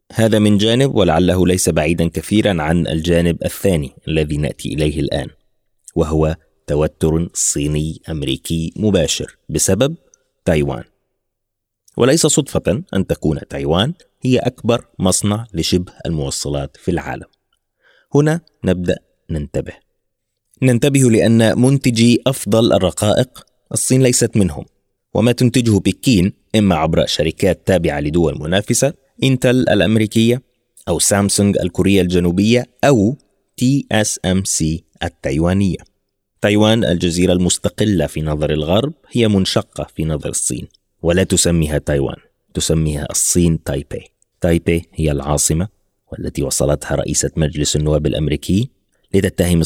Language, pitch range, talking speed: Arabic, 80-110 Hz, 110 wpm